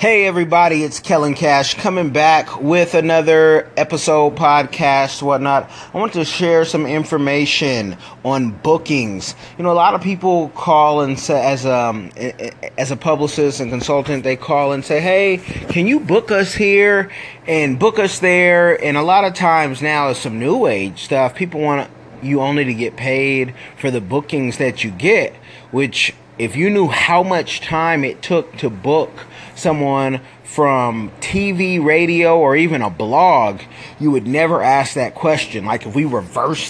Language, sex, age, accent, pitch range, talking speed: English, male, 30-49, American, 135-165 Hz, 170 wpm